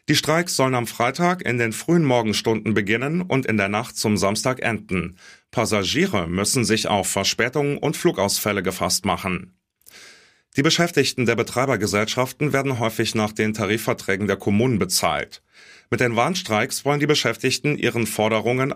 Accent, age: German, 30-49